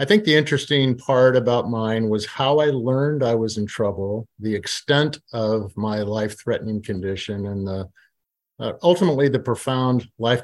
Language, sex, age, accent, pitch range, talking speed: English, male, 50-69, American, 110-135 Hz, 160 wpm